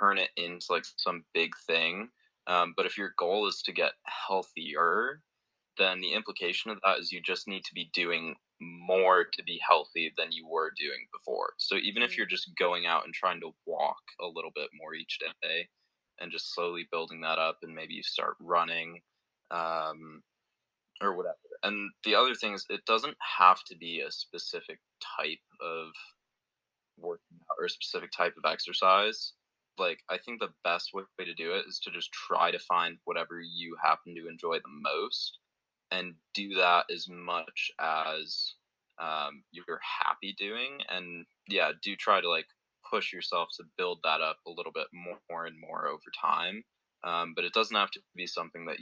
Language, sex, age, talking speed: English, male, 20-39, 185 wpm